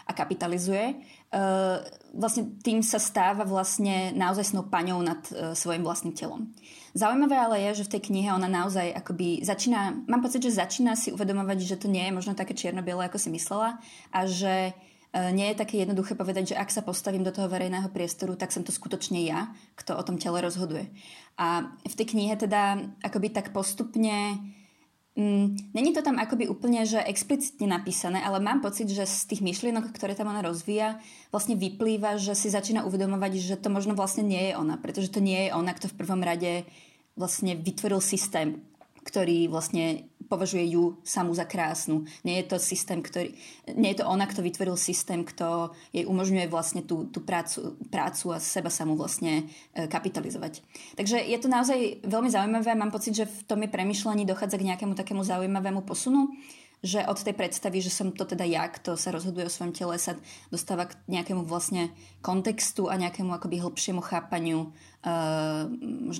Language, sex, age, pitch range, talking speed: Czech, female, 20-39, 175-210 Hz, 180 wpm